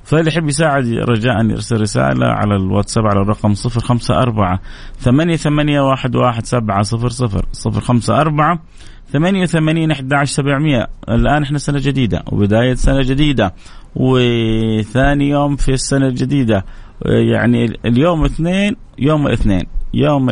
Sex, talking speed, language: male, 130 wpm, Arabic